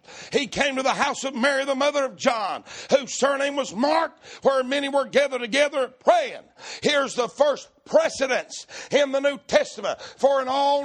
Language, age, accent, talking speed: English, 60-79, American, 175 wpm